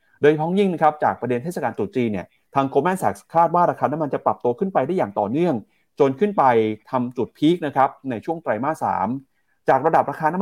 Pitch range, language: 115-160 Hz, Thai